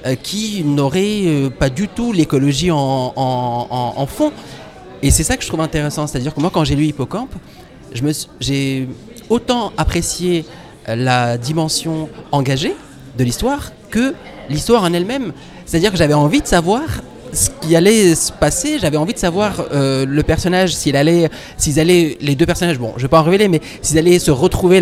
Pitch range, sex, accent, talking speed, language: 135-180 Hz, male, French, 195 wpm, French